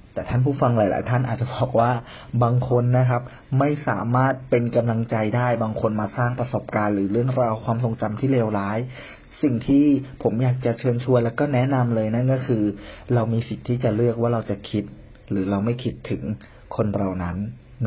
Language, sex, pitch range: Thai, male, 105-125 Hz